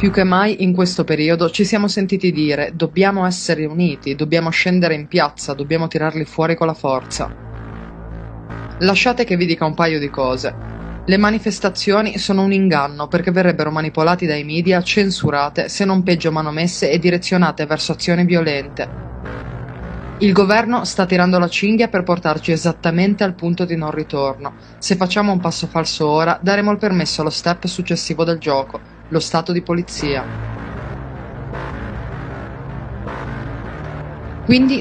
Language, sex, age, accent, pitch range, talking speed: Italian, female, 20-39, native, 155-195 Hz, 145 wpm